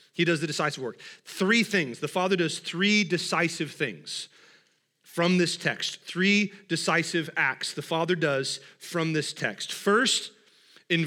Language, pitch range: English, 170-215 Hz